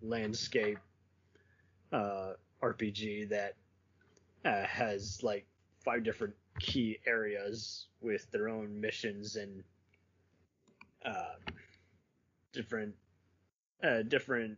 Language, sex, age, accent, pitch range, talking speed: English, male, 20-39, American, 100-120 Hz, 80 wpm